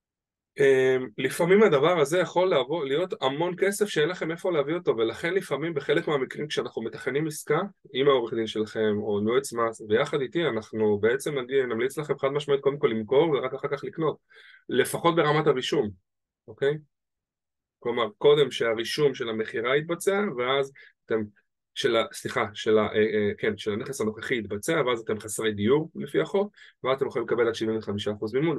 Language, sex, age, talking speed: Hebrew, male, 20-39, 170 wpm